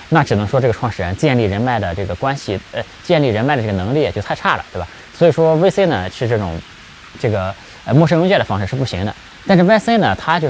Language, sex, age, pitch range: Chinese, male, 20-39, 95-145 Hz